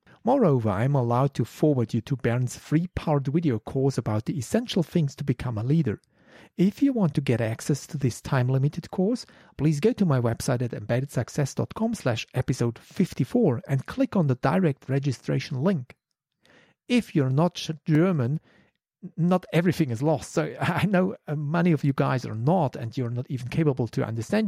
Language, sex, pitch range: English, male, 130-170 Hz